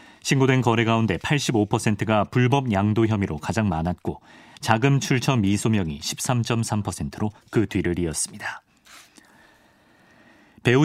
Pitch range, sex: 100-130 Hz, male